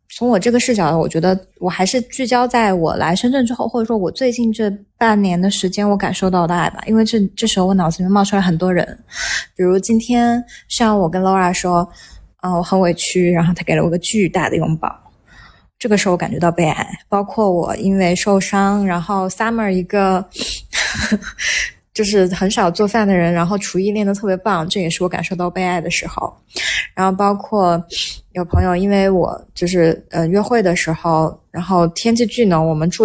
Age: 20-39